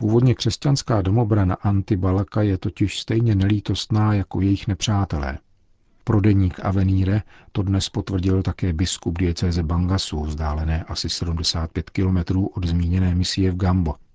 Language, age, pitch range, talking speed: Czech, 50-69, 90-100 Hz, 125 wpm